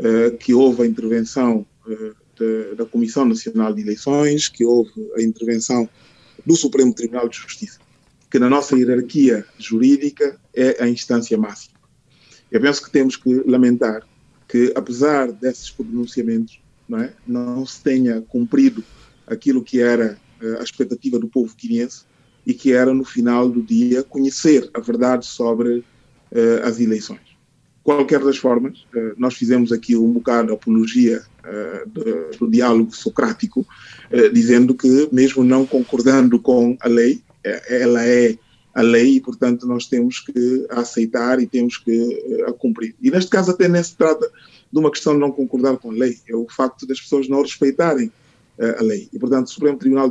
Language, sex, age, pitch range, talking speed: Portuguese, male, 20-39, 120-140 Hz, 155 wpm